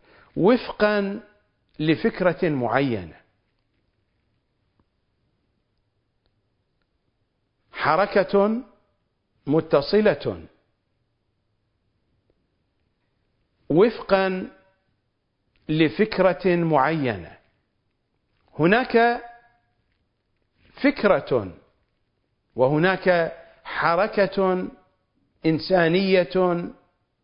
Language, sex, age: Arabic, male, 50-69